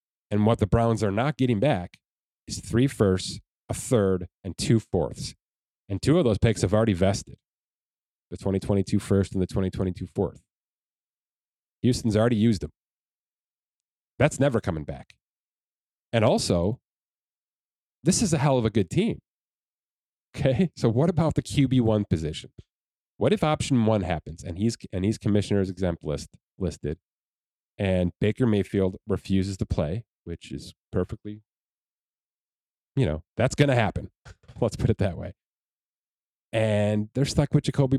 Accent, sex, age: American, male, 30-49